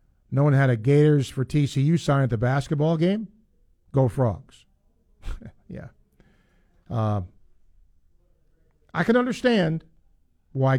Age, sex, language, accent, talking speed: 50-69, male, English, American, 110 wpm